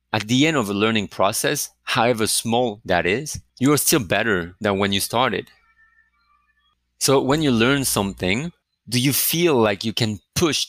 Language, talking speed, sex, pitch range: English, 175 wpm, male, 85-135 Hz